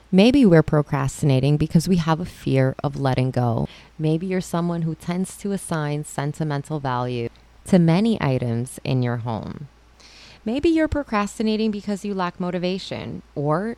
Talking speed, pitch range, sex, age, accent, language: 150 wpm, 135-185 Hz, female, 20-39, American, English